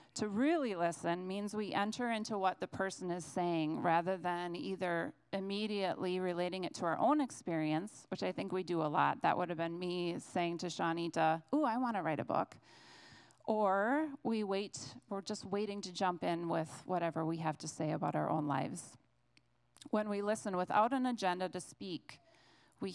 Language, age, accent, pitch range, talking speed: English, 30-49, American, 165-205 Hz, 190 wpm